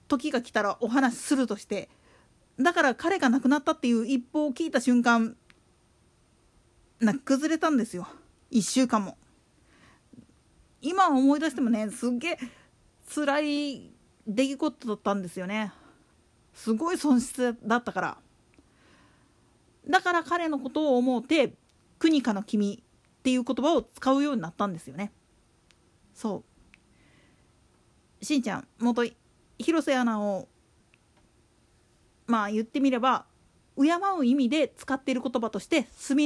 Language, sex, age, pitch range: Japanese, female, 40-59, 230-300 Hz